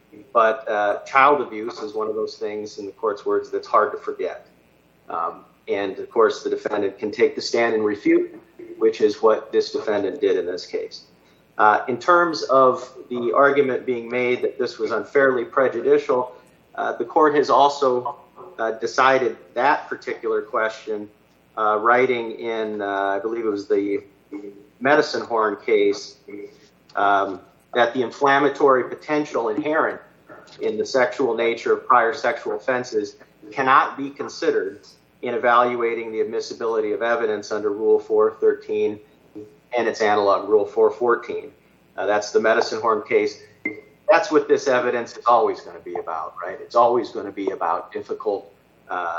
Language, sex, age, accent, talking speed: English, male, 40-59, American, 155 wpm